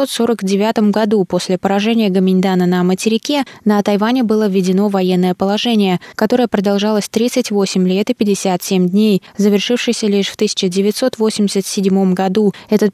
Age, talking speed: 20-39, 125 wpm